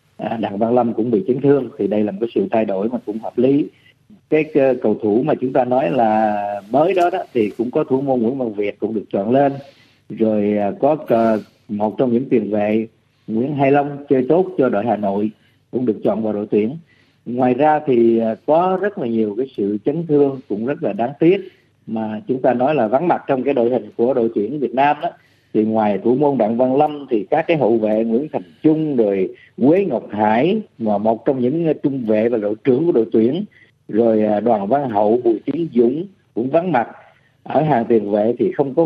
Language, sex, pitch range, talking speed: Vietnamese, male, 110-145 Hz, 225 wpm